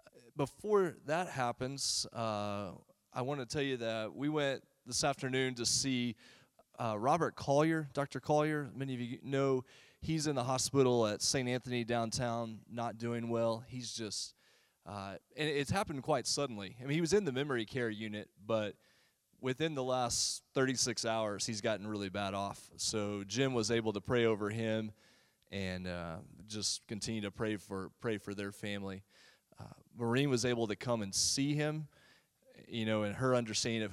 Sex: male